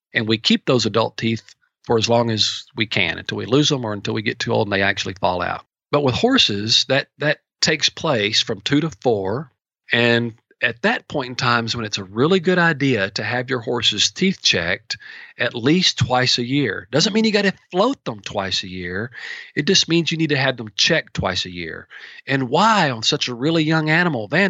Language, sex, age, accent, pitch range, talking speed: English, male, 40-59, American, 115-155 Hz, 230 wpm